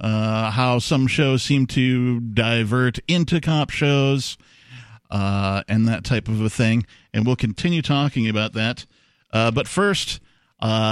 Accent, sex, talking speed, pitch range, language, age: American, male, 150 wpm, 110-135 Hz, English, 50-69